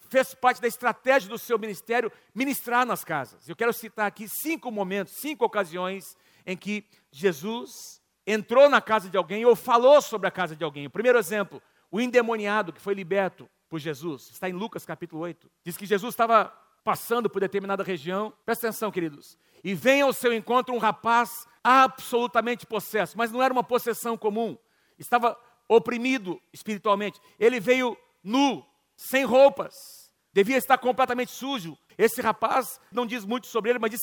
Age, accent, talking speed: 50-69, Brazilian, 170 wpm